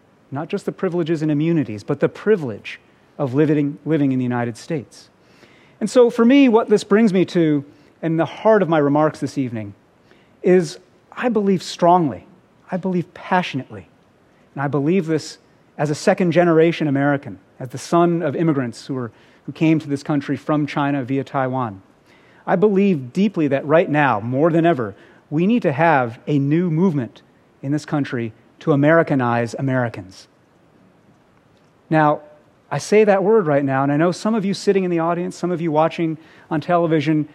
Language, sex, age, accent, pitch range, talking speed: English, male, 40-59, American, 140-175 Hz, 175 wpm